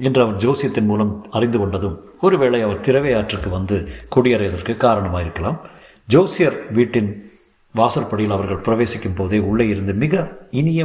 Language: Tamil